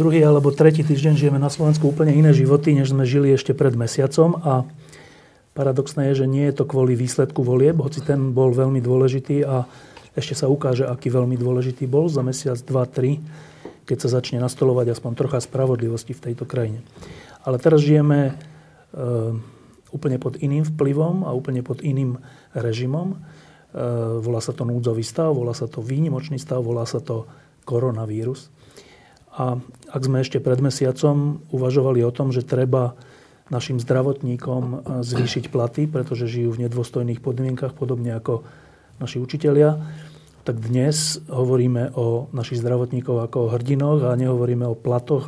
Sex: male